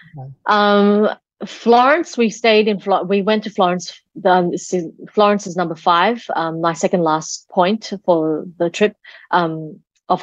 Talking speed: 140 wpm